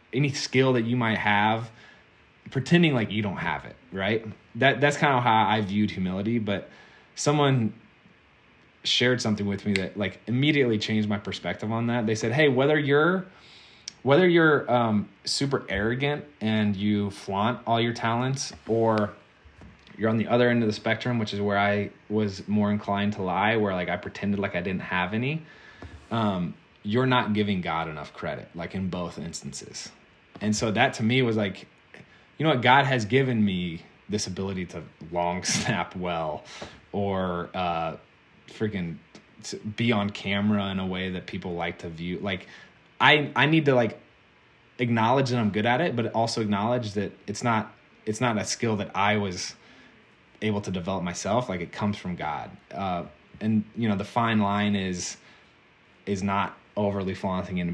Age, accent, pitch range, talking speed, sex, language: 20-39, American, 95-120 Hz, 180 wpm, male, English